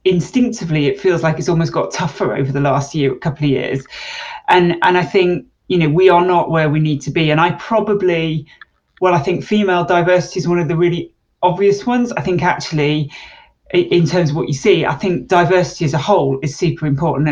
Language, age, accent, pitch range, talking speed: English, 30-49, British, 155-180 Hz, 220 wpm